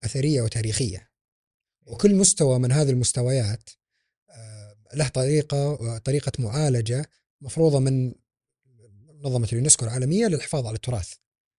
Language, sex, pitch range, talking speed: Arabic, male, 115-150 Hz, 100 wpm